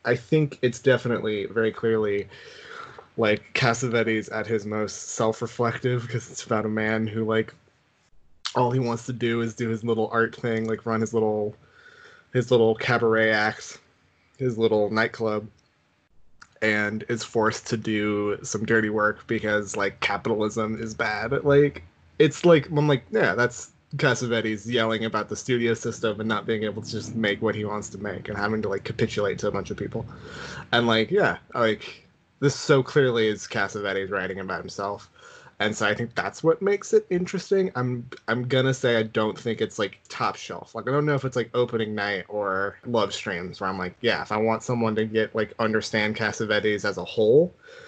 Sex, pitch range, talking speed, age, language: male, 110-125 Hz, 190 wpm, 20-39, English